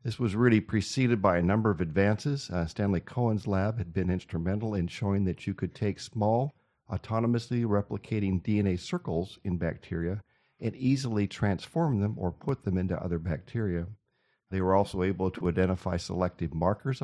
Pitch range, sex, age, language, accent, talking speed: 90-115 Hz, male, 50-69, English, American, 165 wpm